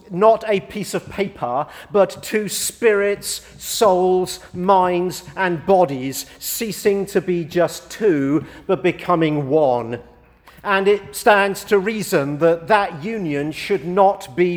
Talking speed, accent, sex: 130 wpm, British, male